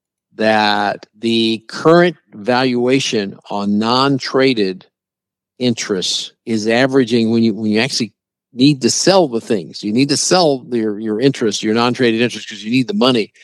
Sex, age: male, 50-69